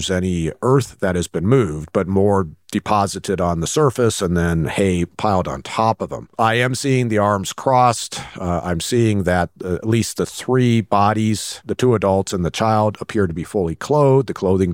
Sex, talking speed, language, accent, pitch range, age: male, 195 wpm, English, American, 90-110 Hz, 50-69